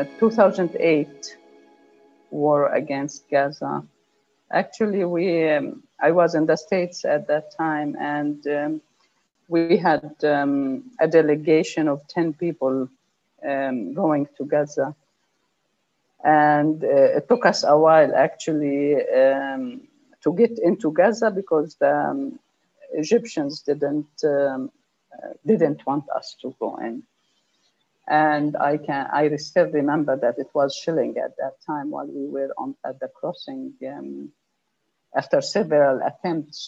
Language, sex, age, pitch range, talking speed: English, female, 50-69, 145-185 Hz, 130 wpm